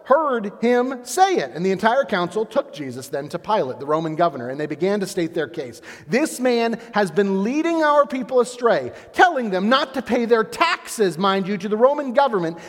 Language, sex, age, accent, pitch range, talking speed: English, male, 40-59, American, 155-230 Hz, 210 wpm